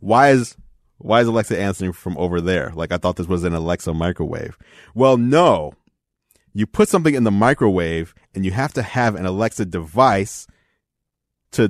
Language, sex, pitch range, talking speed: English, male, 100-140 Hz, 175 wpm